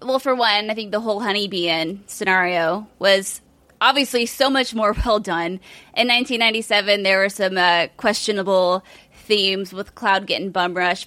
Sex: female